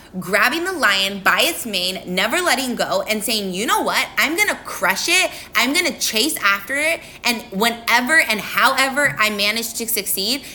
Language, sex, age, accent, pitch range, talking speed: English, female, 20-39, American, 200-275 Hz, 190 wpm